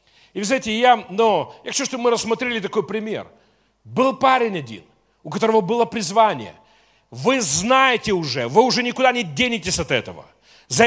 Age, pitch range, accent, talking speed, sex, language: 40-59, 205-250 Hz, native, 155 wpm, male, Russian